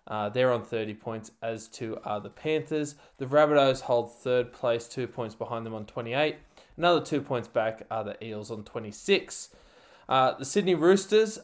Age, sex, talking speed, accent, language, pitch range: 20-39, male, 180 wpm, Australian, English, 115-145 Hz